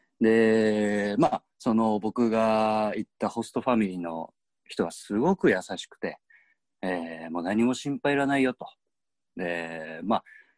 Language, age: Japanese, 40-59